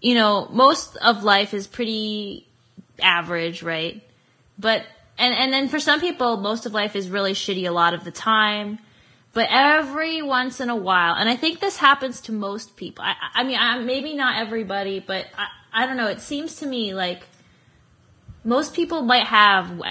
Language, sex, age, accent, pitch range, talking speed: English, female, 20-39, American, 200-255 Hz, 185 wpm